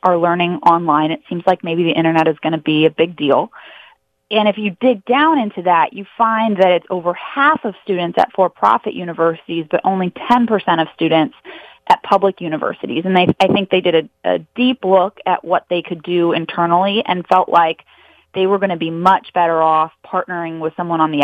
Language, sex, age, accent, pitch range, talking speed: English, female, 20-39, American, 160-190 Hz, 210 wpm